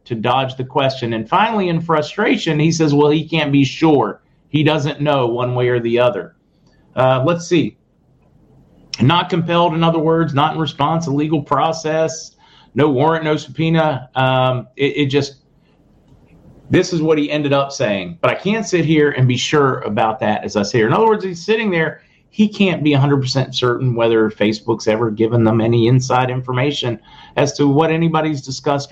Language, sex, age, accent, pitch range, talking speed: English, male, 40-59, American, 120-155 Hz, 185 wpm